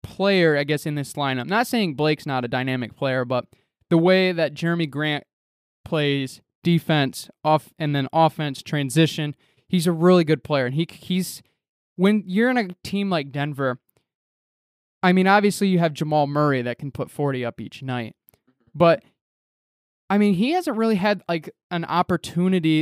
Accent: American